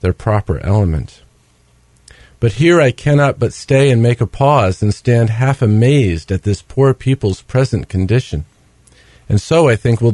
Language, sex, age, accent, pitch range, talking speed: English, male, 50-69, American, 100-130 Hz, 165 wpm